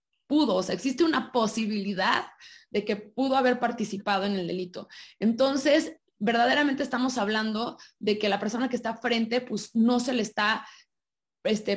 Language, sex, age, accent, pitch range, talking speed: Spanish, female, 20-39, Mexican, 200-240 Hz, 160 wpm